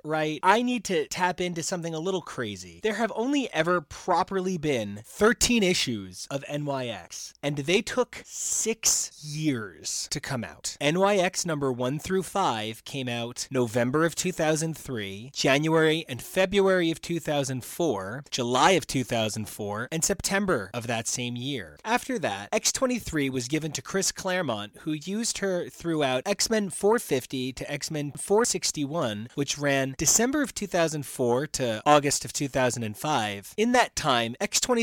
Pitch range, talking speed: 125-180 Hz, 140 wpm